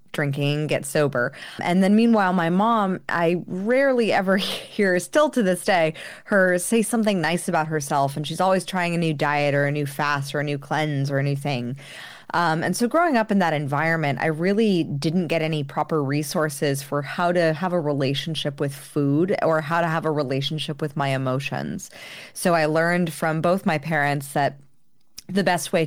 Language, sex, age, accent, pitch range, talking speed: English, female, 20-39, American, 145-175 Hz, 190 wpm